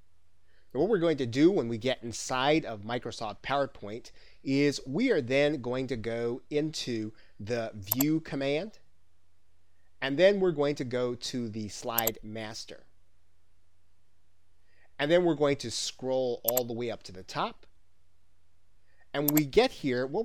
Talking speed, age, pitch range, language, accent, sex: 155 wpm, 30-49, 90-130 Hz, English, American, male